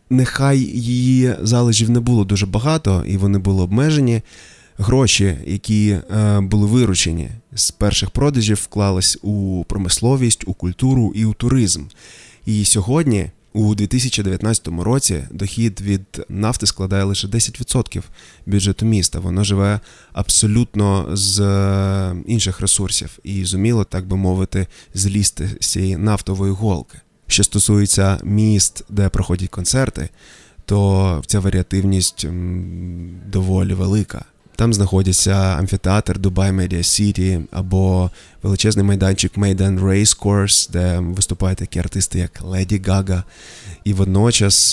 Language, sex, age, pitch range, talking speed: Ukrainian, male, 20-39, 95-105 Hz, 120 wpm